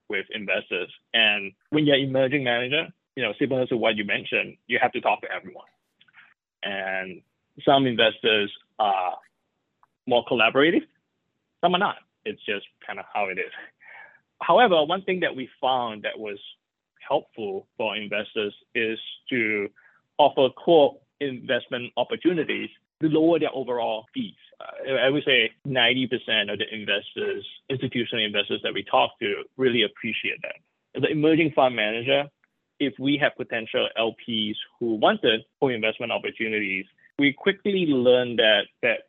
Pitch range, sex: 115-175 Hz, male